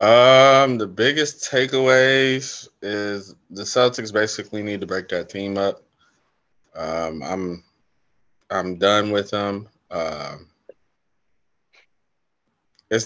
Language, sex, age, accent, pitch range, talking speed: English, male, 20-39, American, 95-110 Hz, 100 wpm